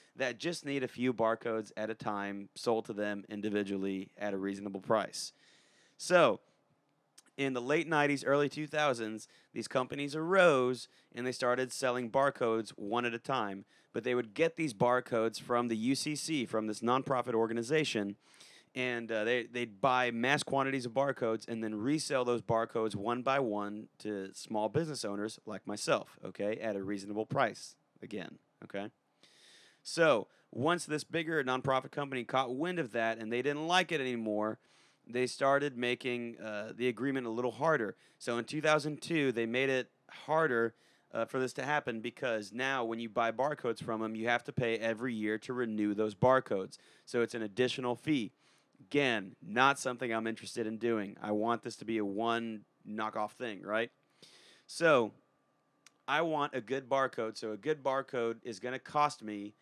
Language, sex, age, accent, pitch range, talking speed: English, male, 30-49, American, 110-135 Hz, 170 wpm